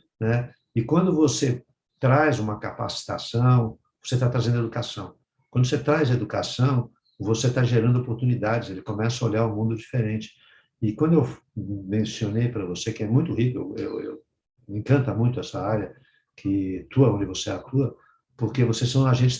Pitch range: 115-140 Hz